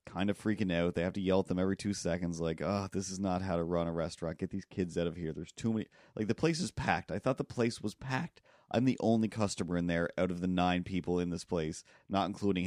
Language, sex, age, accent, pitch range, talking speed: English, male, 30-49, American, 85-110 Hz, 280 wpm